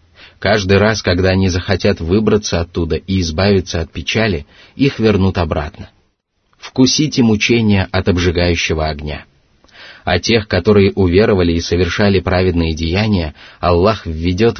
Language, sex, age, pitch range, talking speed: Russian, male, 30-49, 85-105 Hz, 120 wpm